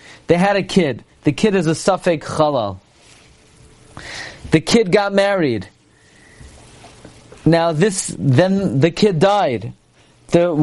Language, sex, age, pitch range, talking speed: English, male, 40-59, 155-205 Hz, 120 wpm